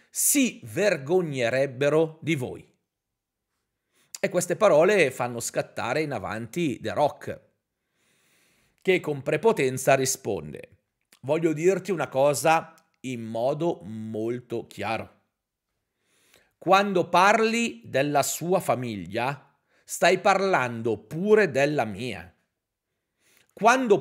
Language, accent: Italian, native